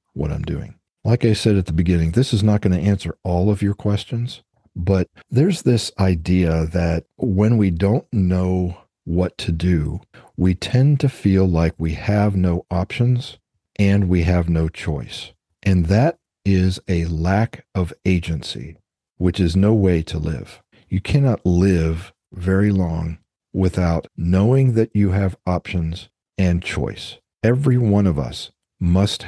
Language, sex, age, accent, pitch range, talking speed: English, male, 40-59, American, 85-105 Hz, 155 wpm